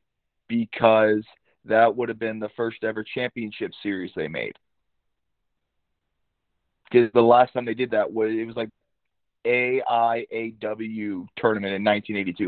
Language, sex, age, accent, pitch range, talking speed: English, male, 30-49, American, 110-145 Hz, 130 wpm